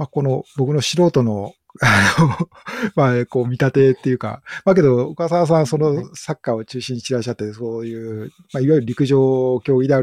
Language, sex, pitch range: Japanese, male, 115-150 Hz